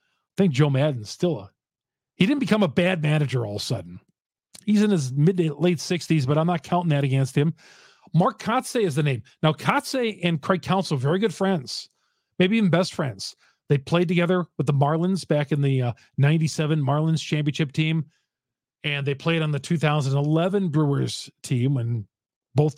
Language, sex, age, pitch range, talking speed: English, male, 40-59, 135-180 Hz, 180 wpm